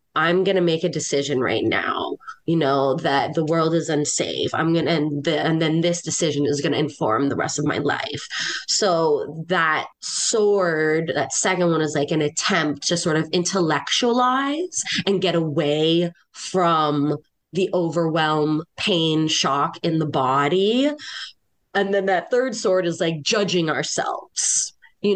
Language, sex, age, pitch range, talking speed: English, female, 20-39, 160-200 Hz, 155 wpm